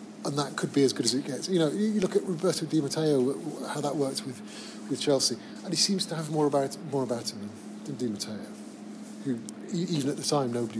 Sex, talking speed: male, 235 wpm